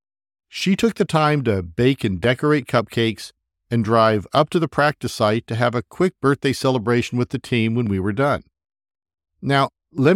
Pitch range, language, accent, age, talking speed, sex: 105-135 Hz, English, American, 50-69, 185 wpm, male